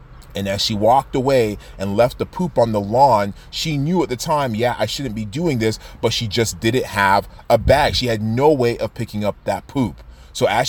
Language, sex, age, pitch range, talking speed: English, male, 30-49, 105-130 Hz, 230 wpm